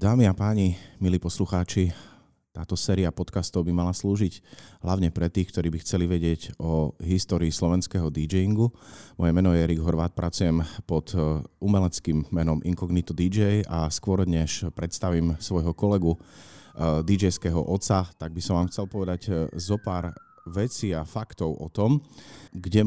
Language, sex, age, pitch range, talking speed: Slovak, male, 30-49, 90-110 Hz, 145 wpm